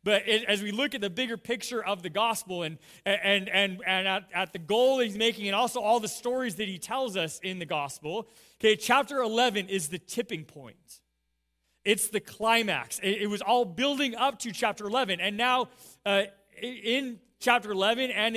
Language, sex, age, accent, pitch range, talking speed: English, male, 30-49, American, 175-230 Hz, 185 wpm